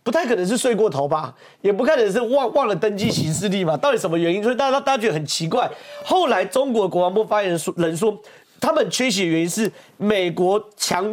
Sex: male